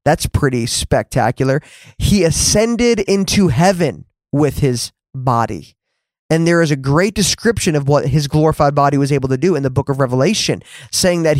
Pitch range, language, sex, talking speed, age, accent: 135-170 Hz, English, male, 170 wpm, 20-39, American